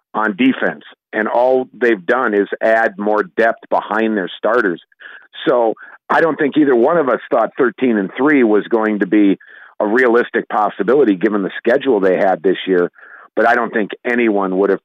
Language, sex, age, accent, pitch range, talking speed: English, male, 50-69, American, 95-110 Hz, 185 wpm